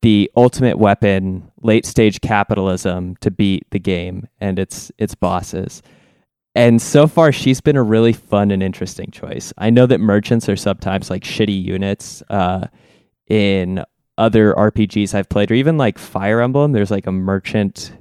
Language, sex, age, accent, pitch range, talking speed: English, male, 20-39, American, 95-115 Hz, 165 wpm